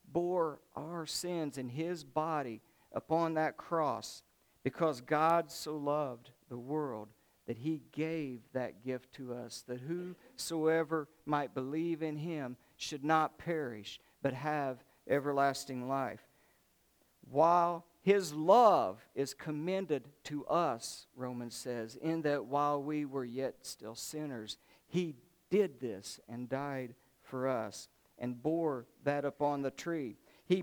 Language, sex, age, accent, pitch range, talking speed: English, male, 50-69, American, 135-170 Hz, 130 wpm